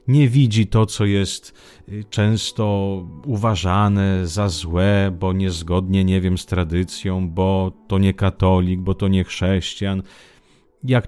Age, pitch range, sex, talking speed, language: 40-59, 95-115 Hz, male, 130 wpm, Italian